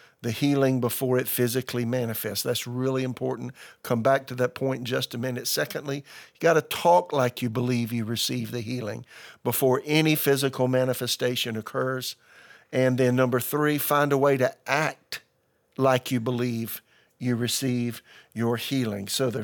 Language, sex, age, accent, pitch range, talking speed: English, male, 50-69, American, 125-140 Hz, 165 wpm